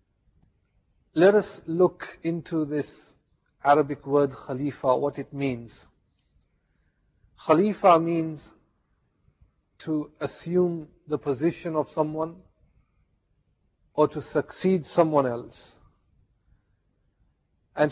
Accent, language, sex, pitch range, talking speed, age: Indian, English, male, 130-160 Hz, 85 wpm, 50-69